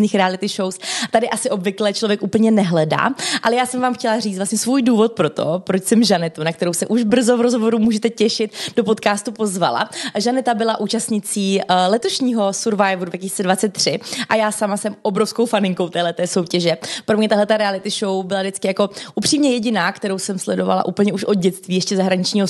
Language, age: Czech, 30-49